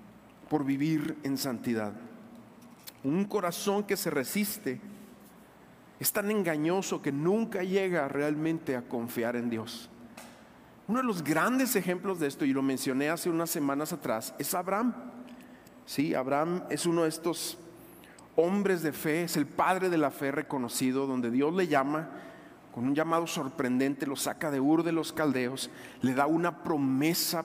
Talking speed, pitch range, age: 155 wpm, 145-200 Hz, 50-69